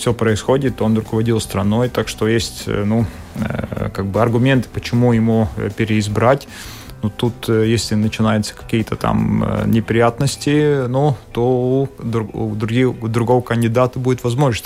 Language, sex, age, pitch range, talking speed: Russian, male, 20-39, 110-130 Hz, 120 wpm